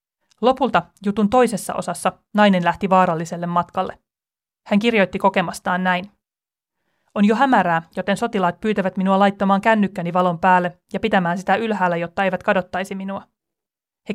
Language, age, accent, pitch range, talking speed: Finnish, 30-49, native, 180-210 Hz, 135 wpm